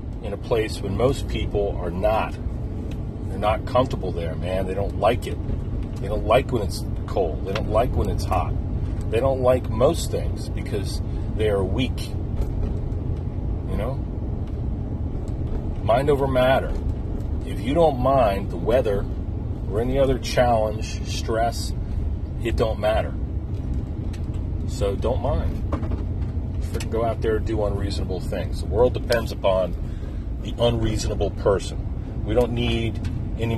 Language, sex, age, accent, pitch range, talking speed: English, male, 40-59, American, 95-110 Hz, 140 wpm